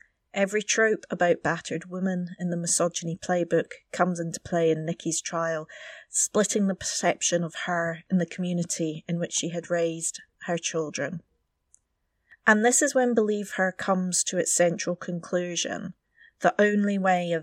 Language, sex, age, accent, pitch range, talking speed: English, female, 30-49, British, 165-185 Hz, 155 wpm